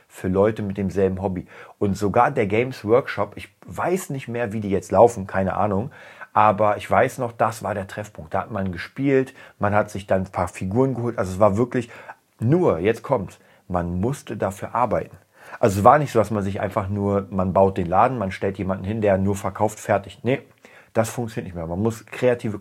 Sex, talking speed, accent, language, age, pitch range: male, 215 wpm, German, German, 40-59, 95-115 Hz